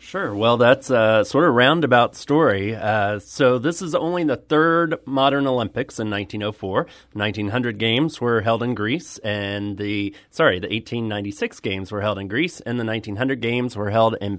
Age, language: 30-49, English